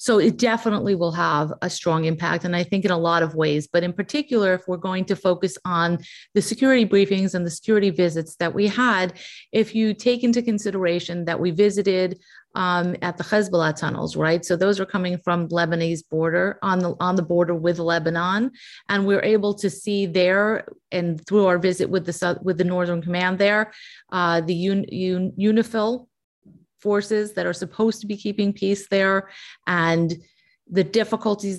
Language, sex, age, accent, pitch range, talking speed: English, female, 30-49, American, 175-205 Hz, 180 wpm